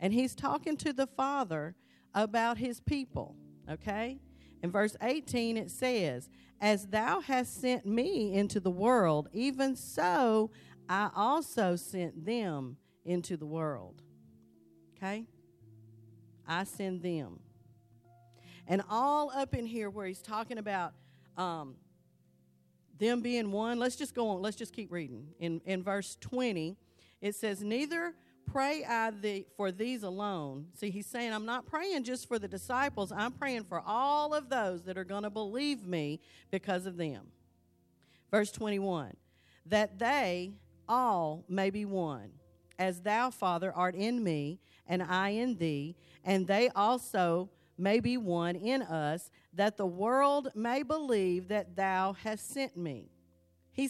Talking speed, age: 145 wpm, 40-59